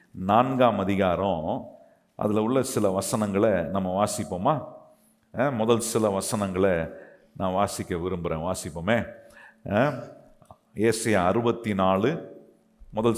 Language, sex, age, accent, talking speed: Tamil, male, 50-69, native, 85 wpm